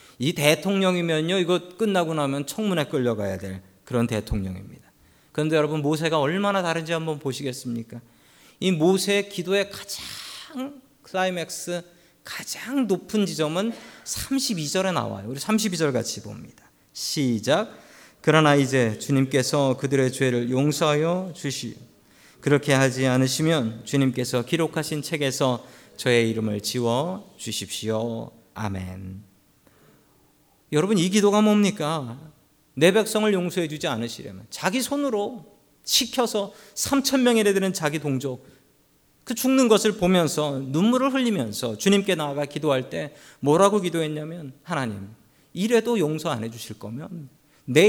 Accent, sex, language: native, male, Korean